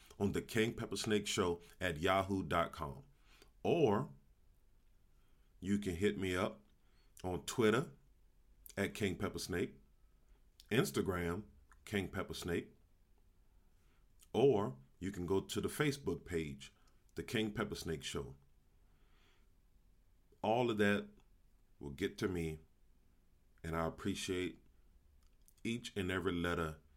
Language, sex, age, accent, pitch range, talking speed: English, male, 40-59, American, 75-95 Hz, 105 wpm